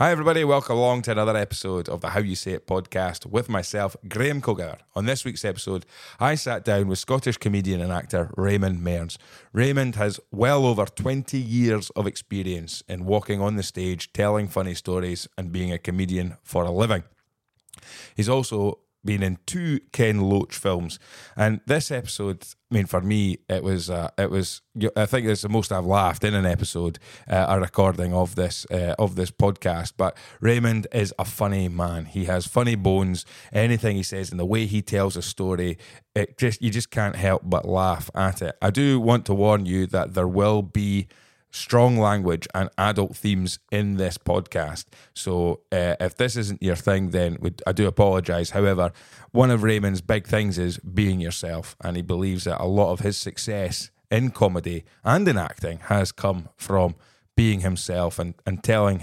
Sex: male